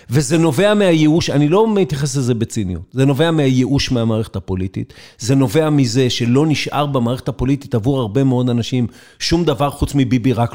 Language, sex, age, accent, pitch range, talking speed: Hebrew, male, 50-69, native, 125-160 Hz, 165 wpm